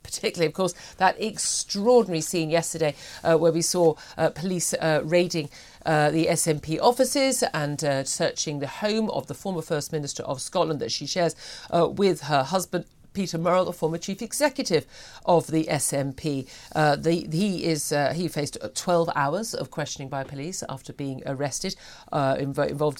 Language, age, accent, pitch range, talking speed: English, 50-69, British, 145-175 Hz, 165 wpm